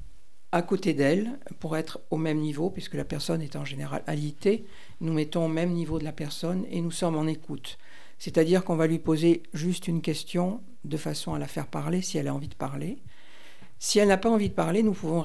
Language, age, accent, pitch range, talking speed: French, 50-69, French, 155-180 Hz, 225 wpm